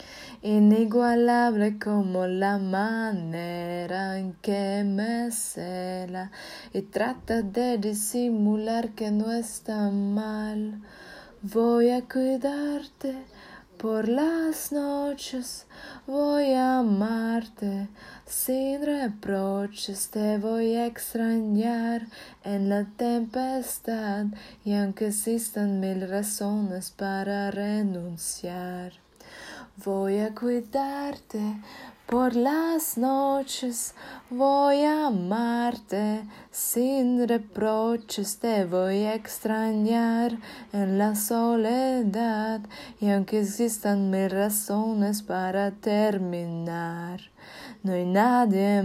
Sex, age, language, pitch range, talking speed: female, 20-39, English, 200-240 Hz, 85 wpm